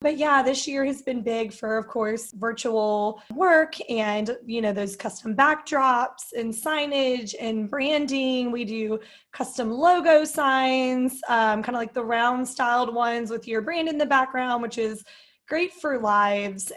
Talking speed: 160 wpm